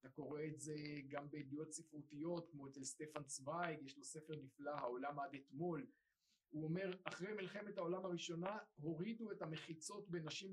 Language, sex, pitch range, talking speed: Hebrew, male, 155-190 Hz, 160 wpm